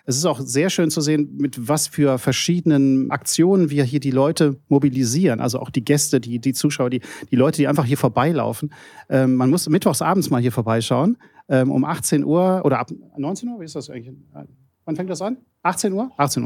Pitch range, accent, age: 140-175 Hz, German, 40-59